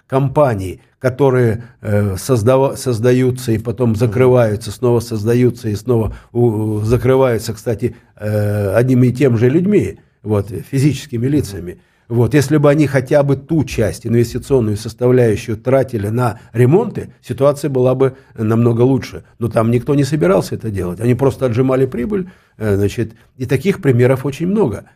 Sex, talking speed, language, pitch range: male, 135 wpm, Russian, 115-135 Hz